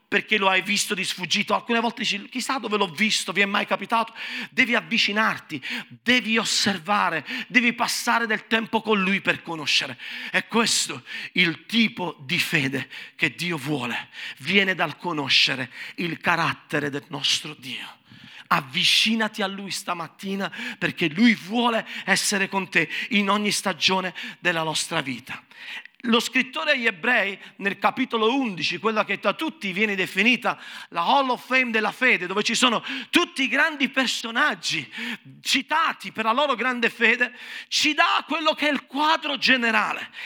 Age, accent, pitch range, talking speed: 50-69, native, 195-255 Hz, 155 wpm